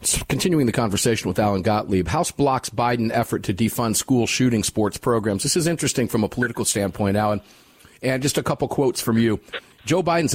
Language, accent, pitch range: English, American, 105-130 Hz